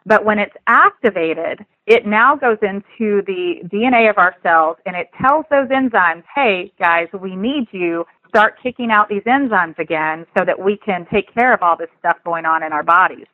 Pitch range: 170-215 Hz